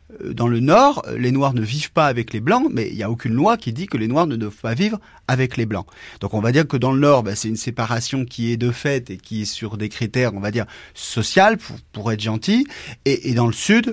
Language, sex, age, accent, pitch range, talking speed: French, male, 30-49, French, 110-145 Hz, 275 wpm